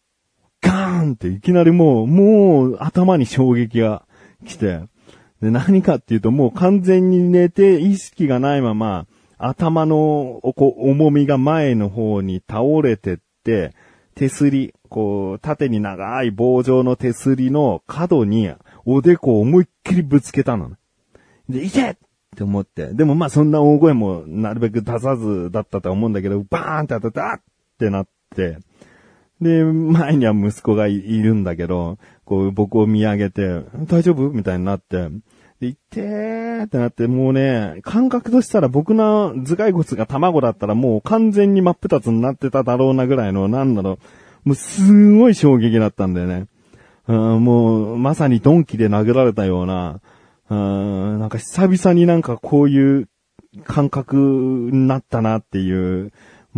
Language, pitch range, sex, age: Japanese, 105-155 Hz, male, 40-59